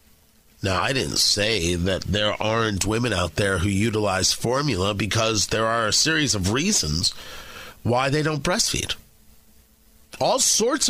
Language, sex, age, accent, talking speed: English, male, 40-59, American, 145 wpm